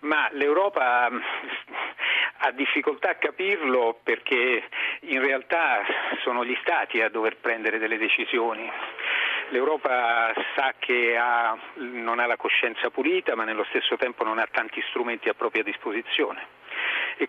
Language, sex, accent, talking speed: Italian, male, native, 130 wpm